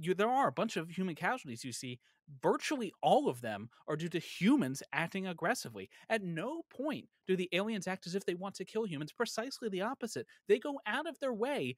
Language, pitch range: English, 145-225 Hz